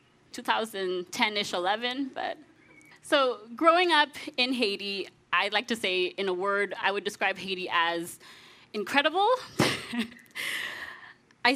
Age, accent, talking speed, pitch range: 20-39, American, 115 wpm, 185-245 Hz